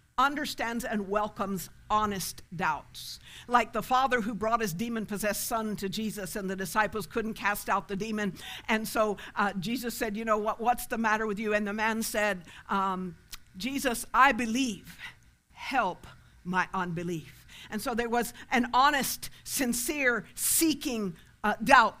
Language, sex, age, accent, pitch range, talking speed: English, female, 50-69, American, 200-255 Hz, 155 wpm